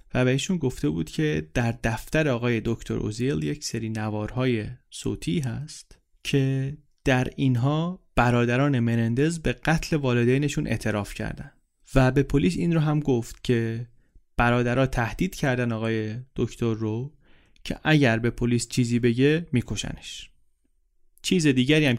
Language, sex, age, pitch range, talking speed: Persian, male, 30-49, 115-145 Hz, 135 wpm